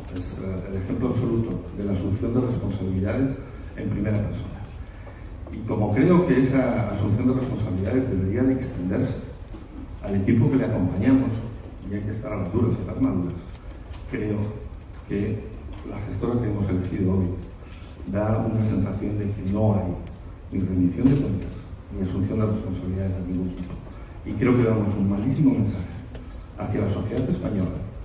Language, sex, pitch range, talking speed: Spanish, male, 95-120 Hz, 160 wpm